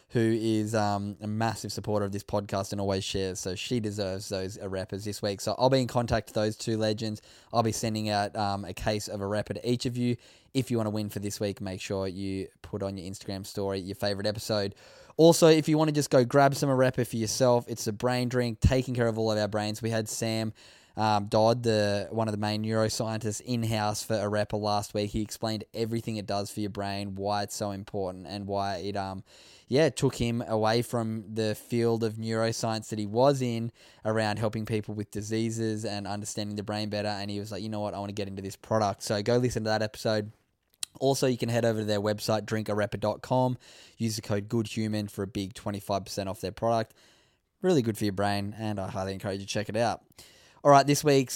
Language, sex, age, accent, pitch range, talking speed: English, male, 10-29, Australian, 100-115 Hz, 235 wpm